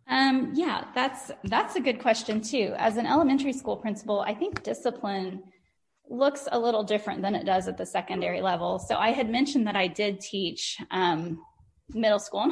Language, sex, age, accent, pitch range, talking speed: English, female, 20-39, American, 185-240 Hz, 185 wpm